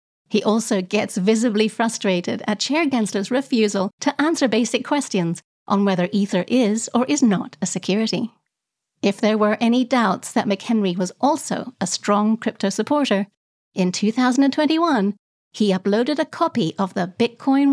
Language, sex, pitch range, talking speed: English, female, 200-265 Hz, 150 wpm